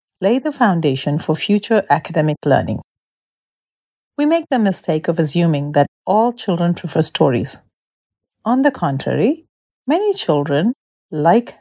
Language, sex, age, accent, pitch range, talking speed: English, female, 40-59, Indian, 155-235 Hz, 125 wpm